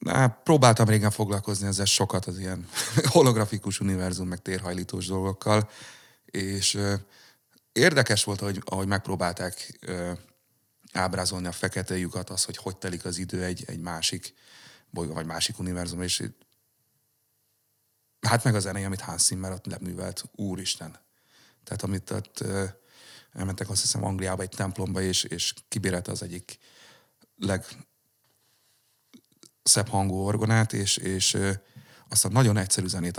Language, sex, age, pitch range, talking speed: Hungarian, male, 30-49, 95-110 Hz, 140 wpm